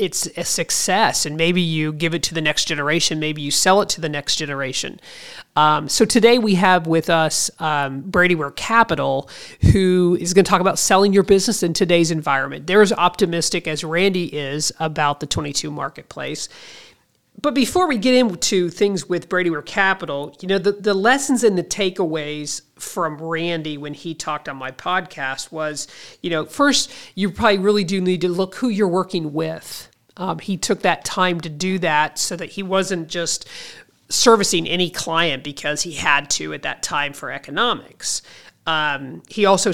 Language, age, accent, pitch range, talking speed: English, 40-59, American, 155-195 Hz, 180 wpm